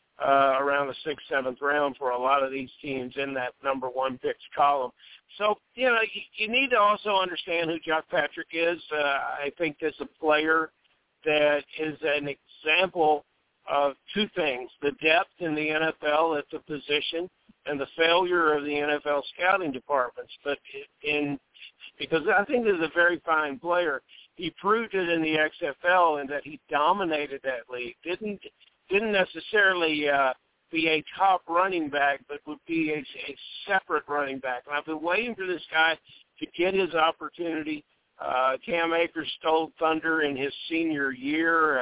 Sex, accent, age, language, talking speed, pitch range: male, American, 50-69, English, 170 wpm, 145-170 Hz